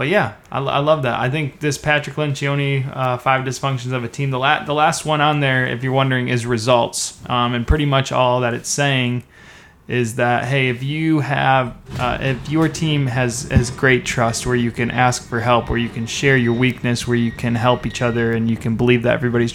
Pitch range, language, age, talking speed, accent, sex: 120-135 Hz, English, 20-39, 225 wpm, American, male